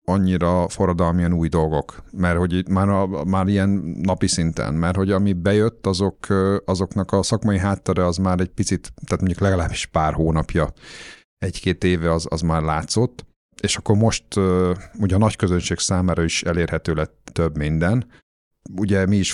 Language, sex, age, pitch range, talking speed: Hungarian, male, 50-69, 85-100 Hz, 165 wpm